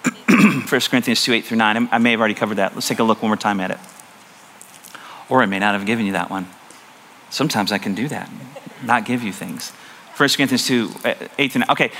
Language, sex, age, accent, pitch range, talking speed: English, male, 40-59, American, 145-195 Hz, 230 wpm